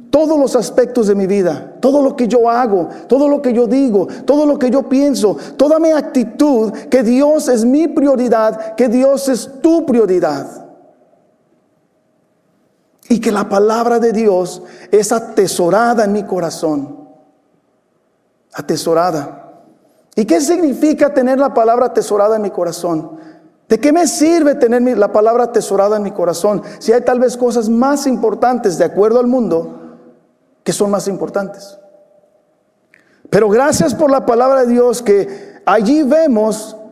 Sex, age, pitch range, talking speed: male, 50-69, 210-280 Hz, 150 wpm